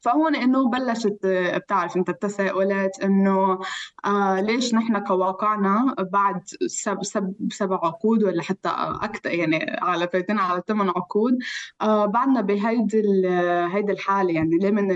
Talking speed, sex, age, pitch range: 130 wpm, female, 20-39, 185-225 Hz